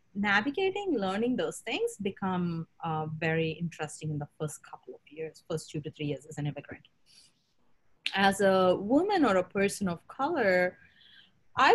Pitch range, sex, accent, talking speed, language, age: 160-210 Hz, female, Indian, 160 wpm, English, 30-49